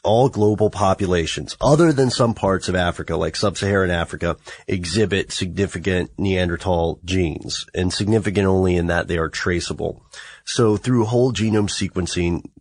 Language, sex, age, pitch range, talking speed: English, male, 30-49, 90-110 Hz, 140 wpm